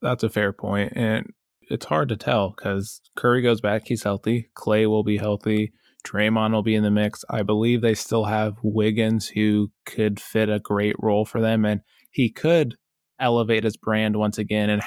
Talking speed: 195 wpm